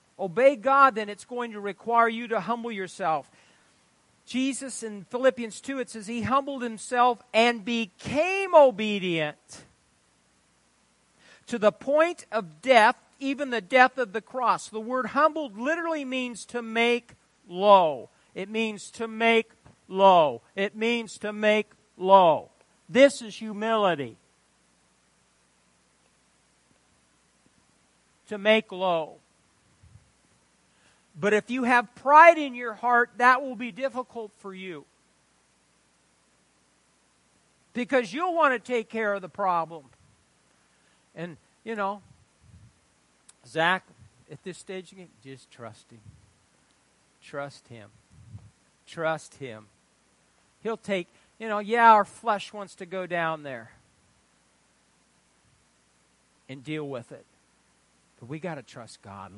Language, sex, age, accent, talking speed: English, male, 50-69, American, 120 wpm